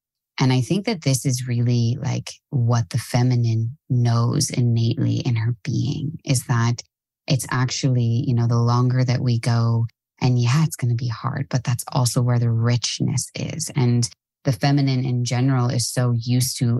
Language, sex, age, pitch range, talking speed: English, female, 20-39, 120-145 Hz, 180 wpm